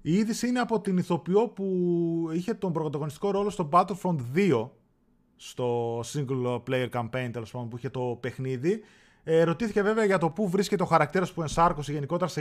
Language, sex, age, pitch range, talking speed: Greek, male, 20-39, 140-195 Hz, 175 wpm